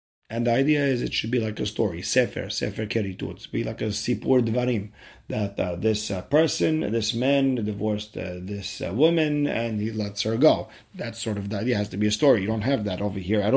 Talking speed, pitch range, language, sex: 240 wpm, 100-125 Hz, English, male